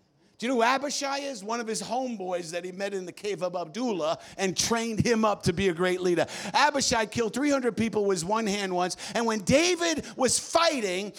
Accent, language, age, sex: American, English, 50-69, male